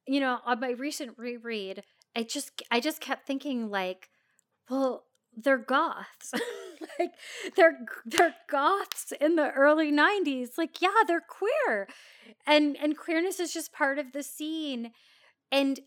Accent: American